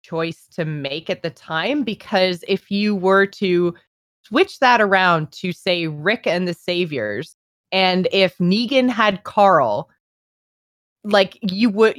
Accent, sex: American, female